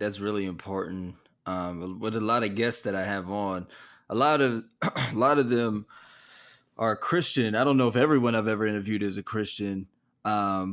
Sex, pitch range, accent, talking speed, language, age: male, 100-125 Hz, American, 190 wpm, English, 20-39